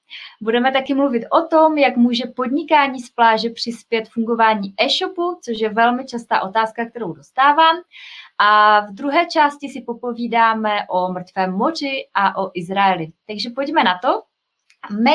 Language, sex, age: Czech, female, 20-39